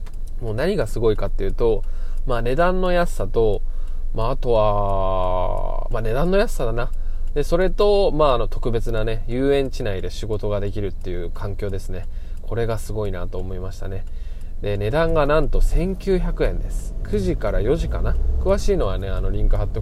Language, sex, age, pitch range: Japanese, male, 20-39, 90-120 Hz